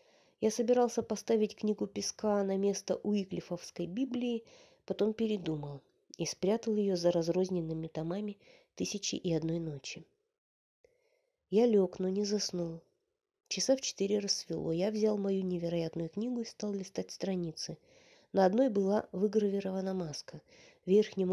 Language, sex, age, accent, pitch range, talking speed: Russian, female, 20-39, native, 175-225 Hz, 130 wpm